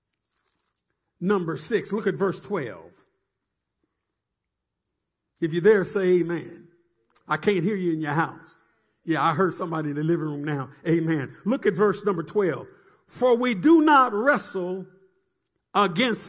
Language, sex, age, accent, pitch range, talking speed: English, male, 50-69, American, 200-290 Hz, 145 wpm